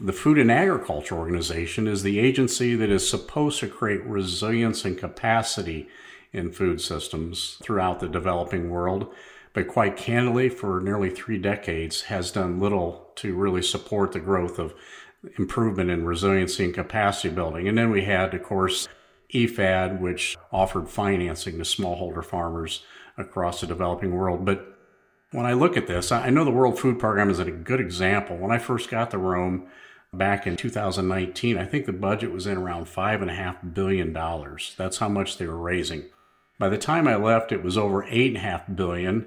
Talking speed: 170 wpm